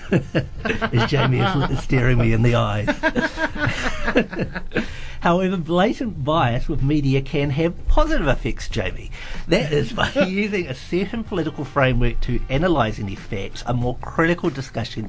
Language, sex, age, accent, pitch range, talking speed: English, male, 50-69, Australian, 110-140 Hz, 135 wpm